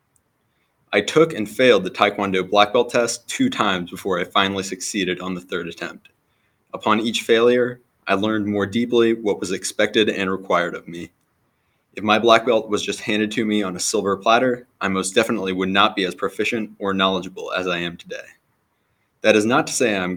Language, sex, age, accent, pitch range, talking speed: English, male, 20-39, American, 95-115 Hz, 195 wpm